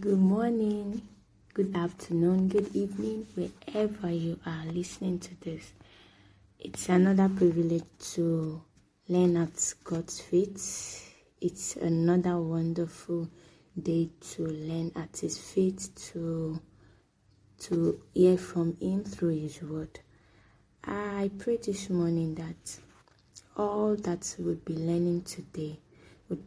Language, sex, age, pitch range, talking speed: English, female, 20-39, 155-185 Hz, 110 wpm